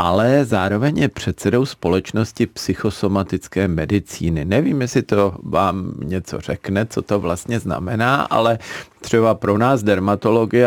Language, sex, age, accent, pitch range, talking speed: Czech, male, 50-69, native, 95-110 Hz, 125 wpm